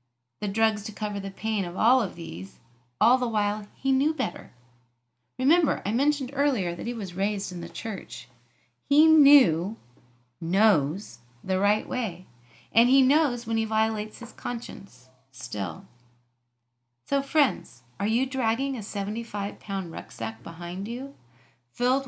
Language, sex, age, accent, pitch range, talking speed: English, female, 40-59, American, 160-245 Hz, 145 wpm